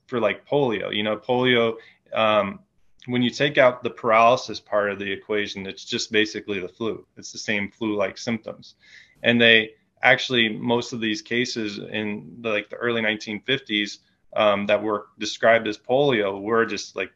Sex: male